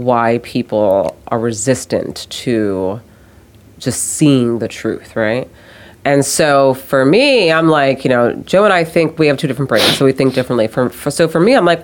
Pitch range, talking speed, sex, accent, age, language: 125-195 Hz, 190 wpm, female, American, 30-49, English